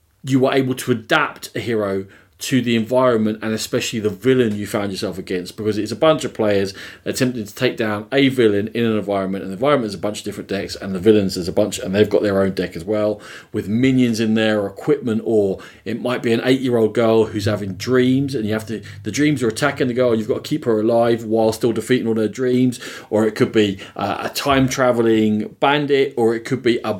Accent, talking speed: British, 235 wpm